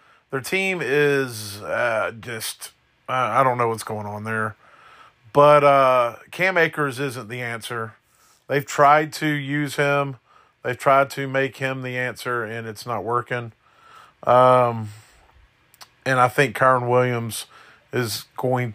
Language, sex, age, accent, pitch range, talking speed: English, male, 40-59, American, 115-140 Hz, 140 wpm